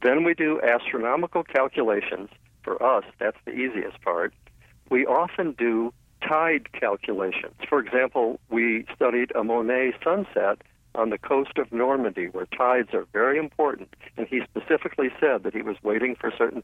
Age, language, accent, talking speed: 60-79, English, American, 155 wpm